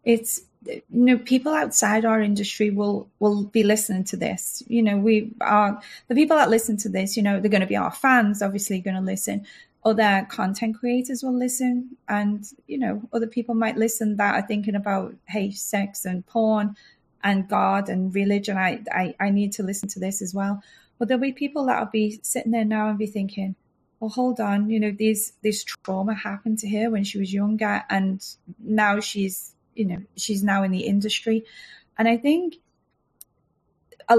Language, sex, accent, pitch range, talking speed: English, female, British, 205-240 Hz, 195 wpm